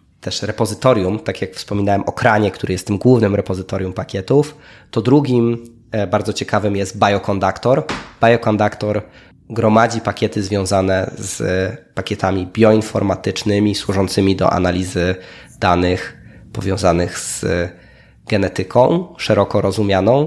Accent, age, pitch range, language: native, 20-39, 95-115 Hz, Polish